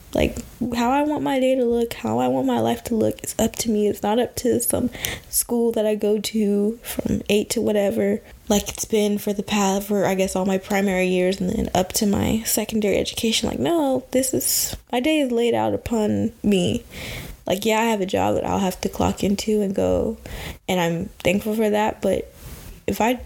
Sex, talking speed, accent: female, 220 wpm, American